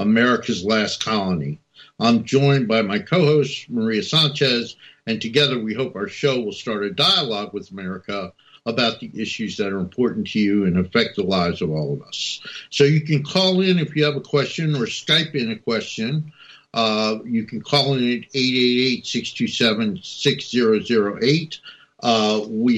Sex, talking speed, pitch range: male, 160 wpm, 115-150 Hz